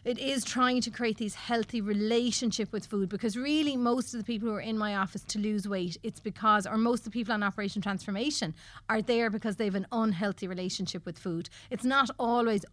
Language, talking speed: English, 220 wpm